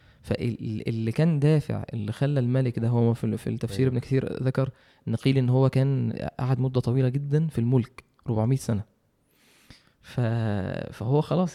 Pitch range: 115-140 Hz